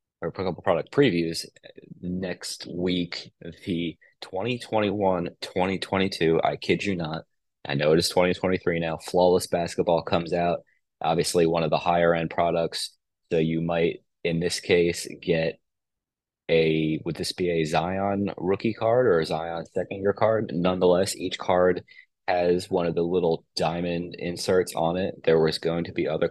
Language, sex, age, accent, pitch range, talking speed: English, male, 20-39, American, 85-90 Hz, 155 wpm